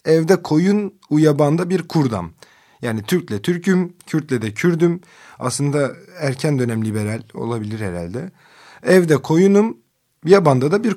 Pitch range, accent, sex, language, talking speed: 115-165 Hz, native, male, Turkish, 120 wpm